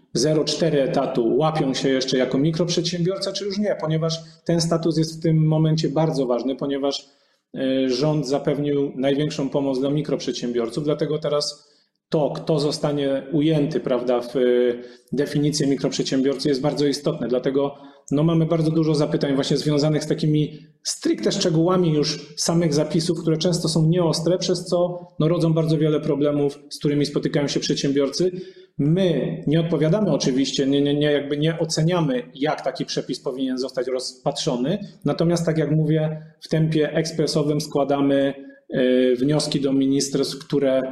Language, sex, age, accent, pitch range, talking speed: Polish, male, 30-49, native, 135-160 Hz, 140 wpm